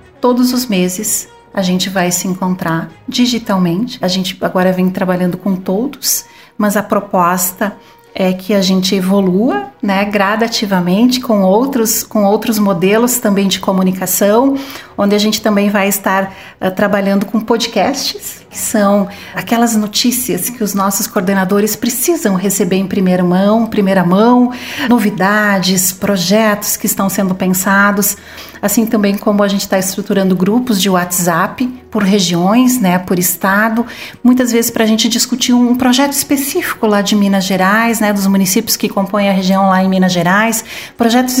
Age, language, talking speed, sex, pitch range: 40-59, Portuguese, 150 wpm, female, 190-235 Hz